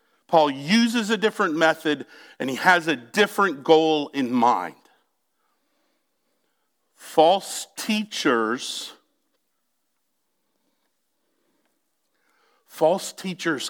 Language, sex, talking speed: English, male, 75 wpm